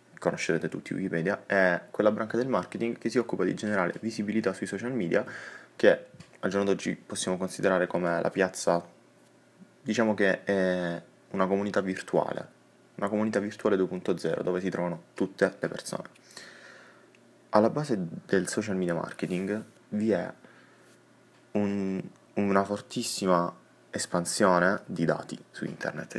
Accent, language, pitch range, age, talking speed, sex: native, Italian, 85-110 Hz, 20-39, 130 wpm, male